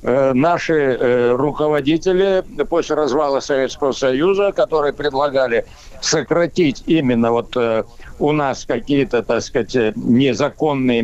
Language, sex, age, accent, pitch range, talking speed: Russian, male, 60-79, native, 140-200 Hz, 105 wpm